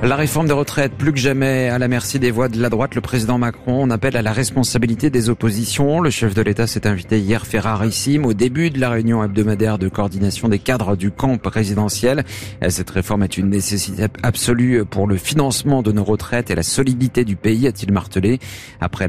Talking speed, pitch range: 210 wpm, 100-120 Hz